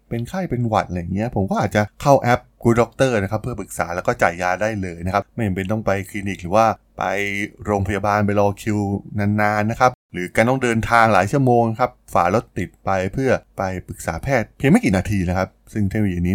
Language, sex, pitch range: Thai, male, 95-115 Hz